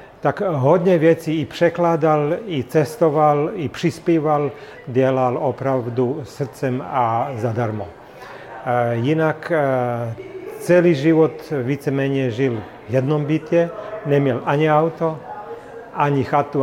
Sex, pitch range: male, 125-150 Hz